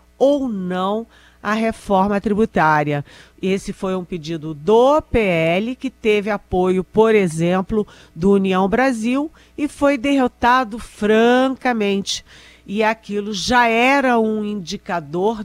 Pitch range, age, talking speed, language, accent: 170-220 Hz, 50-69, 115 wpm, Portuguese, Brazilian